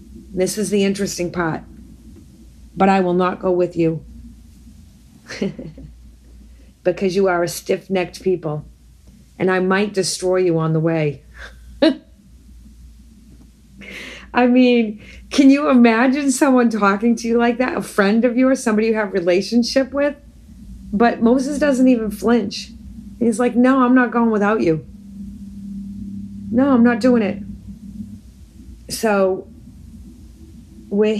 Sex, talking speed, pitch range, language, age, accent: female, 130 wpm, 185-245 Hz, English, 40-59, American